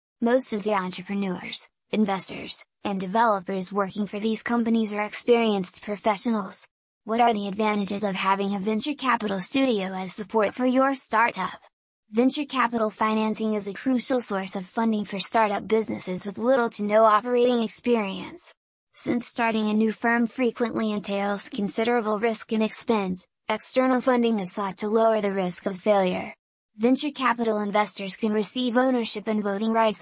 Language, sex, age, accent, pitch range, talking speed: English, female, 10-29, American, 205-235 Hz, 155 wpm